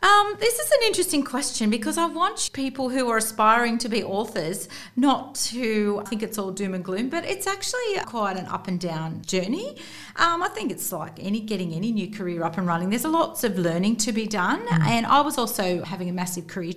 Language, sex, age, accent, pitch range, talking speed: English, female, 40-59, Australian, 170-225 Hz, 220 wpm